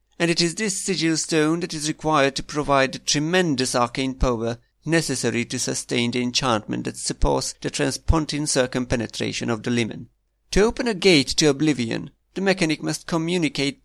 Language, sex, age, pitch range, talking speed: English, male, 50-69, 125-155 Hz, 165 wpm